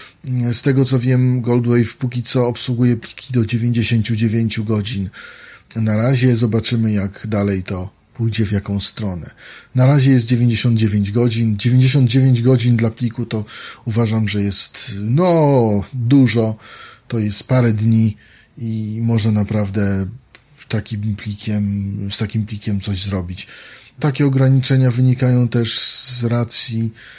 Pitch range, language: 100-125 Hz, Polish